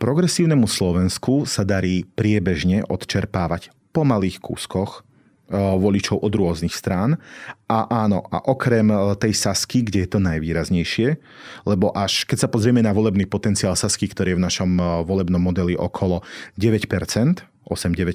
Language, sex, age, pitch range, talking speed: Slovak, male, 40-59, 95-110 Hz, 130 wpm